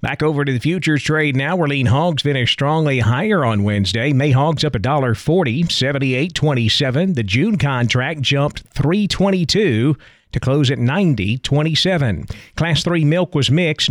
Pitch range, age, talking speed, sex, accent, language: 130-165 Hz, 40-59, 150 wpm, male, American, English